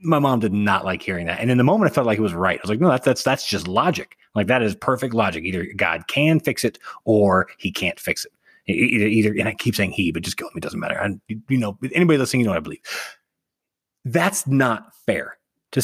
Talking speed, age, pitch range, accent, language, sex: 260 wpm, 30-49, 105-130 Hz, American, English, male